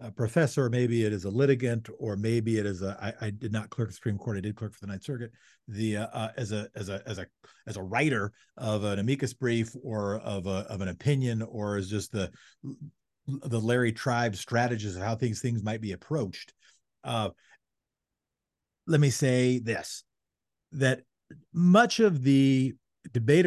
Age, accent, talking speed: 50-69, American, 185 wpm